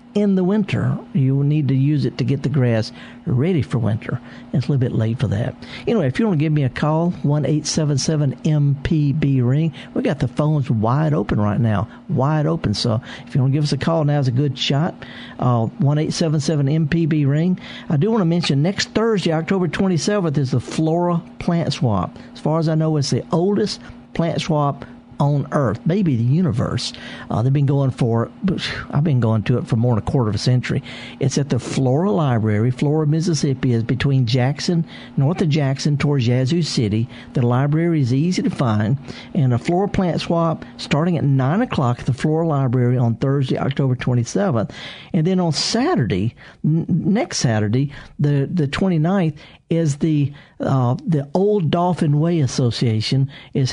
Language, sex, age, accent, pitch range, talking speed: English, male, 50-69, American, 125-165 Hz, 190 wpm